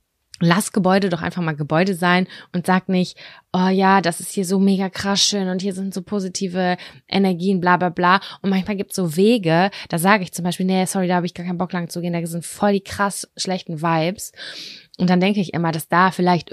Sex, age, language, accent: female, 20-39, German, German